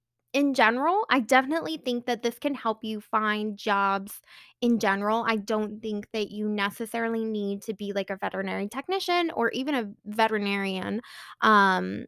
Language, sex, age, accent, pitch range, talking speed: English, female, 20-39, American, 210-265 Hz, 160 wpm